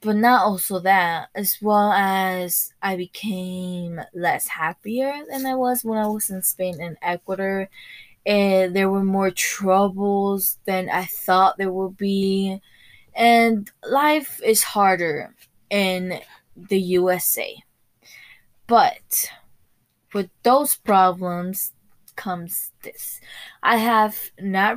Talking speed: 115 wpm